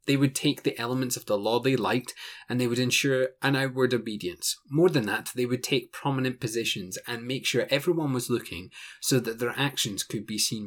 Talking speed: 215 wpm